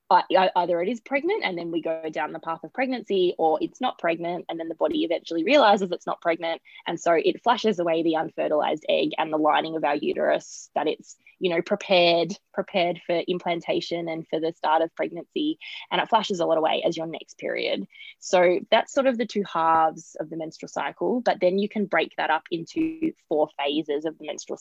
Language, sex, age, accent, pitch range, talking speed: English, female, 20-39, Australian, 160-205 Hz, 215 wpm